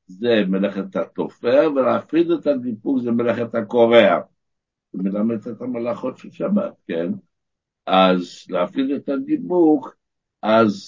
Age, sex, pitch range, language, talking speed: 60-79, male, 105-140 Hz, Hebrew, 115 wpm